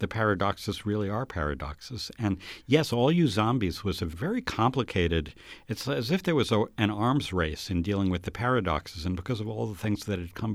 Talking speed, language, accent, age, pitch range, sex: 200 wpm, English, American, 60-79, 90-115 Hz, male